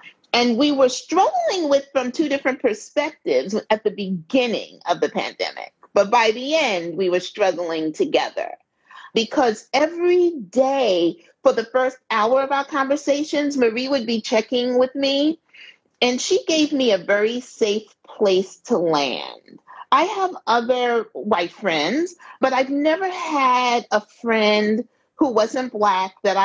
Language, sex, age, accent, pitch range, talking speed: English, female, 40-59, American, 225-315 Hz, 145 wpm